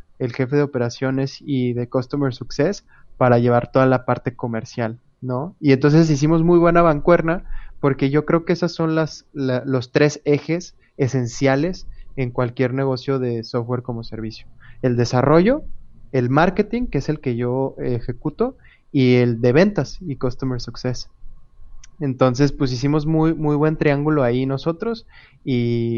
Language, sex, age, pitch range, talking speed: Spanish, male, 20-39, 125-150 Hz, 155 wpm